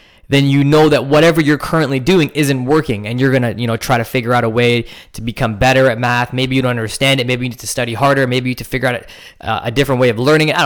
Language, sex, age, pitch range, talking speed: English, male, 10-29, 115-145 Hz, 295 wpm